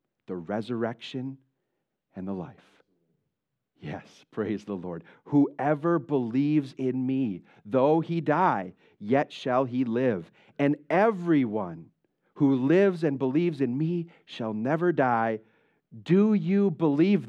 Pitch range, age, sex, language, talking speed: 115-155 Hz, 40-59, male, English, 120 wpm